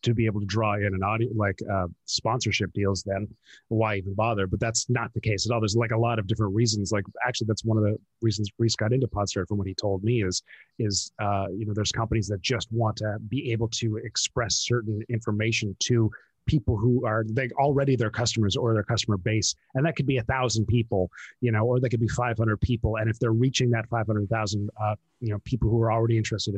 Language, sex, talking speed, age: English, male, 240 wpm, 30-49